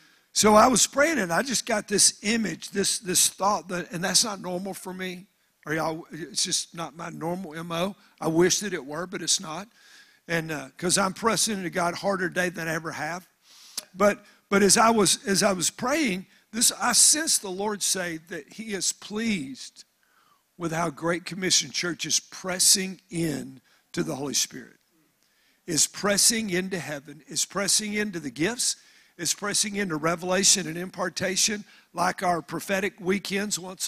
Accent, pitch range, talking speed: American, 175-205 Hz, 175 wpm